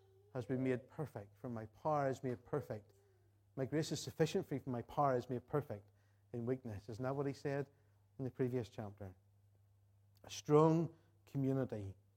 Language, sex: English, male